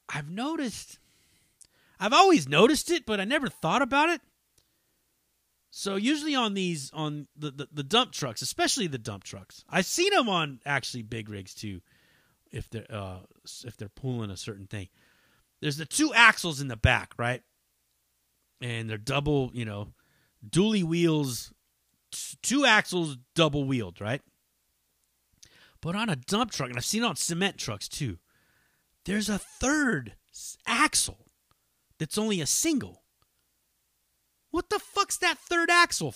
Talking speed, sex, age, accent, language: 150 wpm, male, 30-49, American, English